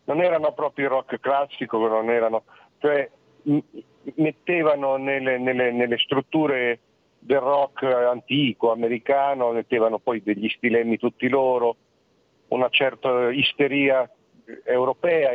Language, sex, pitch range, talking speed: Italian, male, 125-160 Hz, 115 wpm